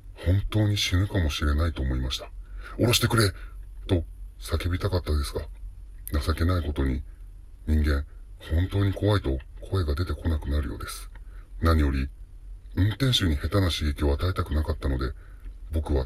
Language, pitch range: Japanese, 80-95 Hz